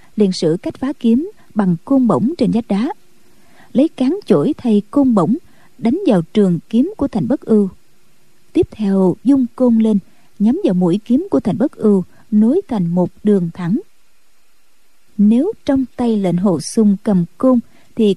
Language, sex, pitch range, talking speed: Vietnamese, female, 195-260 Hz, 170 wpm